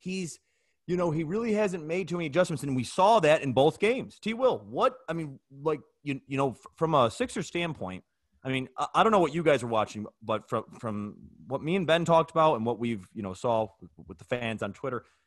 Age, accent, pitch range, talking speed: 30-49, American, 110-155 Hz, 240 wpm